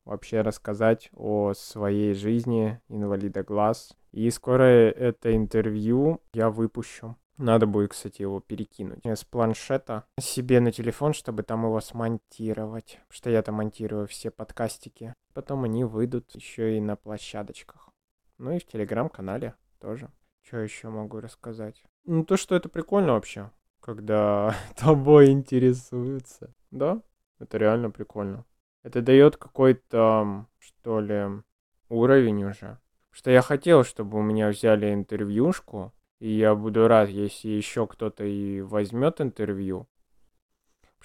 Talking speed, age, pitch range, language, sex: 130 wpm, 20-39, 105-130 Hz, Russian, male